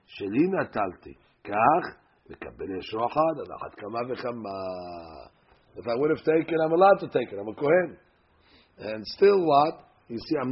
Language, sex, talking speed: English, male, 110 wpm